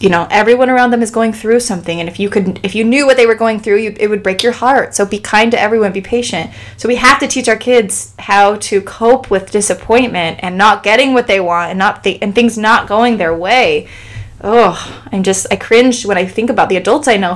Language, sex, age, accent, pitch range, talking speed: English, female, 20-39, American, 200-250 Hz, 255 wpm